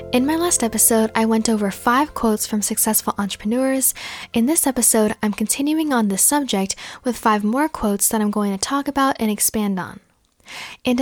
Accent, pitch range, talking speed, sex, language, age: American, 210-265 Hz, 185 wpm, female, English, 10-29